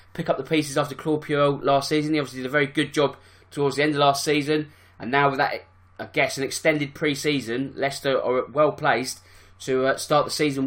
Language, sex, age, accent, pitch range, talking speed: English, male, 20-39, British, 125-155 Hz, 215 wpm